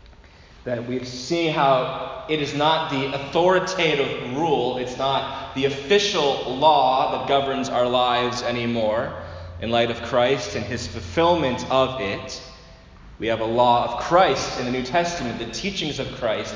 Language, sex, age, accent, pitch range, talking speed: English, male, 20-39, American, 120-145 Hz, 155 wpm